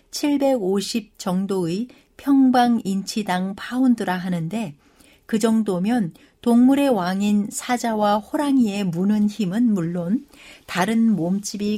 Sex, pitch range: female, 185-250 Hz